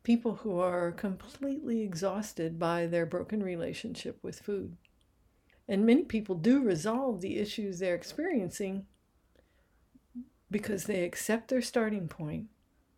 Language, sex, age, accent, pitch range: Japanese, female, 60-79, American, 180-230 Hz